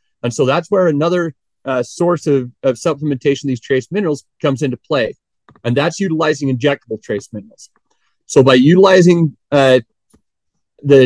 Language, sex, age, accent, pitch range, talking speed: English, male, 30-49, American, 130-155 Hz, 150 wpm